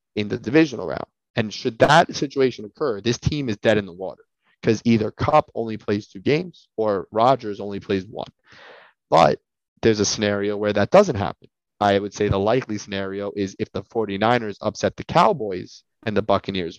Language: English